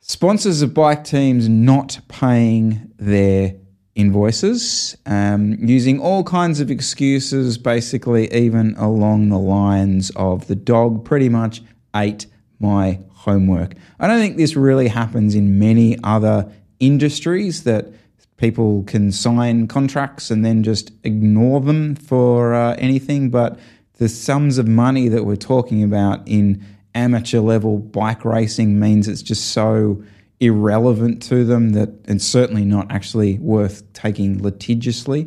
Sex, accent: male, Australian